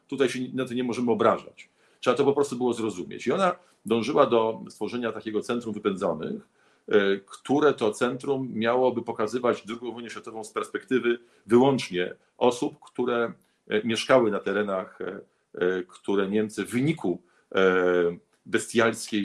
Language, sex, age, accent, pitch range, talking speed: Polish, male, 50-69, native, 95-120 Hz, 130 wpm